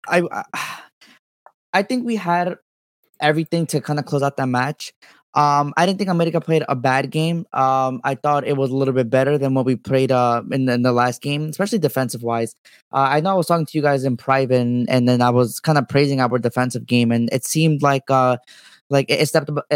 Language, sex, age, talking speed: English, male, 10-29, 230 wpm